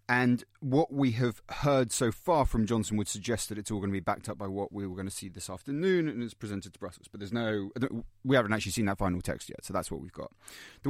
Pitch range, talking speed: 100-125 Hz, 275 wpm